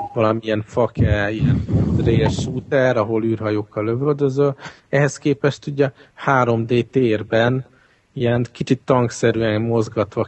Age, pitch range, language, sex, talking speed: 50-69, 105-125 Hz, Hungarian, male, 100 wpm